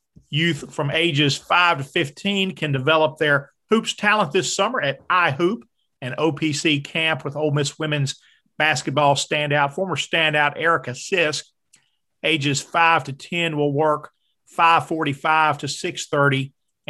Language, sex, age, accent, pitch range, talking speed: English, male, 40-59, American, 140-165 Hz, 130 wpm